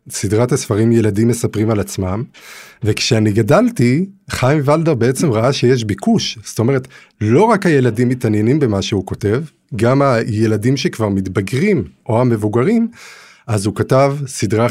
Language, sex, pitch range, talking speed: Hebrew, male, 110-150 Hz, 135 wpm